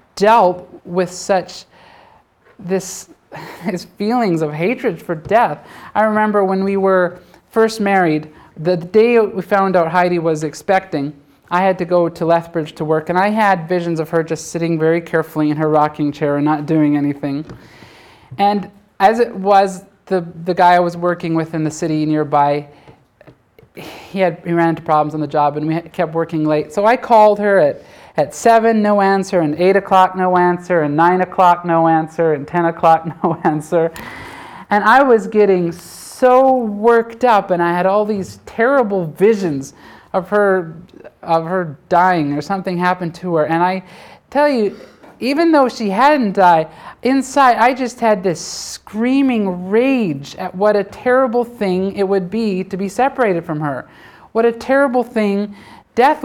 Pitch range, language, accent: 165-210 Hz, English, American